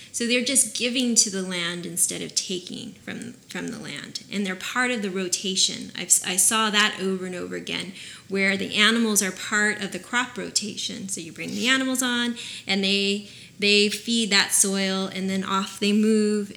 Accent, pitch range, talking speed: American, 190-220 Hz, 195 wpm